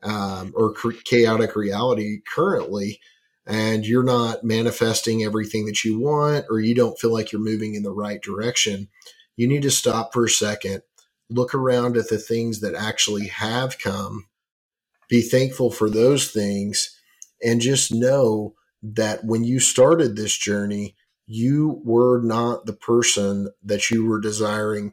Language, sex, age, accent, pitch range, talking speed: English, male, 40-59, American, 105-120 Hz, 150 wpm